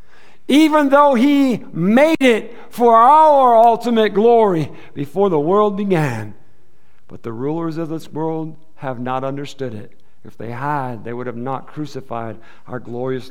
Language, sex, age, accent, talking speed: English, male, 50-69, American, 150 wpm